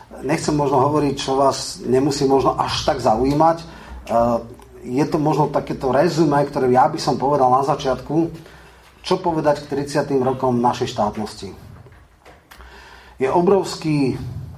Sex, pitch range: male, 120-145 Hz